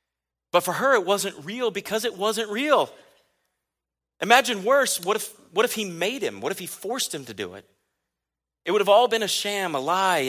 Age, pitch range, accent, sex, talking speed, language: 40-59, 120-200 Hz, American, male, 210 wpm, English